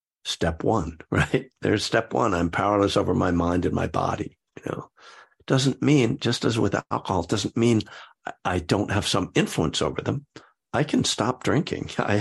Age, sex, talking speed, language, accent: 60-79, male, 185 wpm, English, American